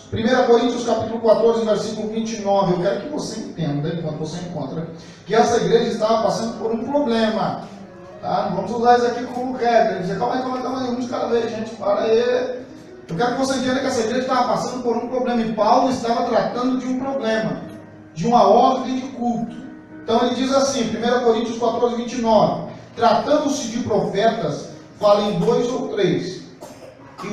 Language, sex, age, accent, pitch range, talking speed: Portuguese, male, 40-59, Brazilian, 190-250 Hz, 180 wpm